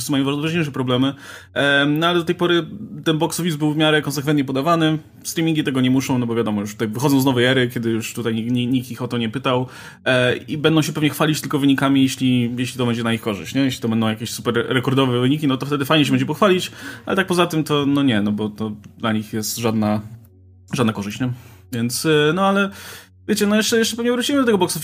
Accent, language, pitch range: native, Polish, 130-170 Hz